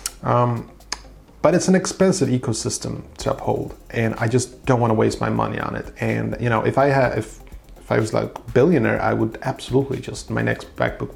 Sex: male